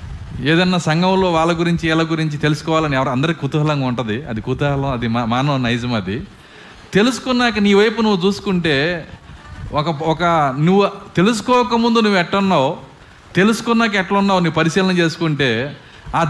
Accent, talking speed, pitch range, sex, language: native, 130 wpm, 135-220 Hz, male, Telugu